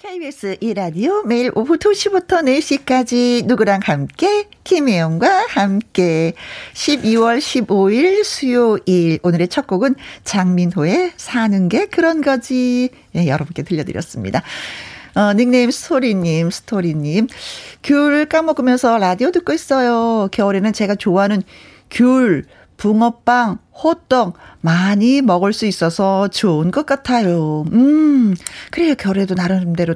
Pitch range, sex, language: 185-275 Hz, female, Korean